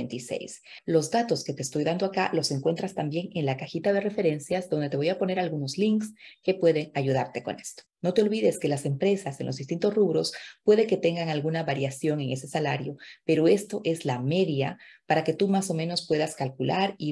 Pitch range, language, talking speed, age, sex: 145-190 Hz, Spanish, 205 wpm, 40-59, female